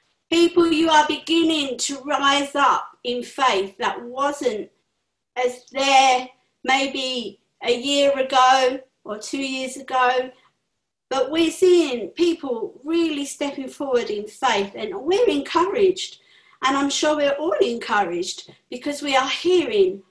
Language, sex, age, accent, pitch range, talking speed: English, female, 50-69, British, 250-315 Hz, 130 wpm